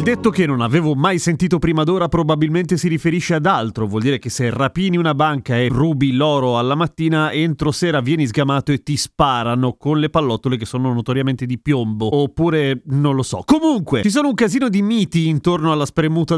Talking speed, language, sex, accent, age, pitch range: 200 wpm, Italian, male, native, 30-49, 135-170 Hz